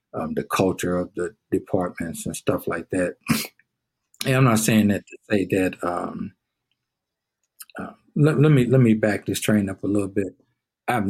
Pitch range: 90-110 Hz